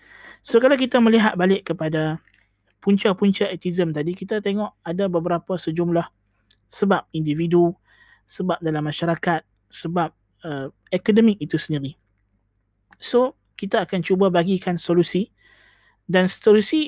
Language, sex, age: Malay, male, 20-39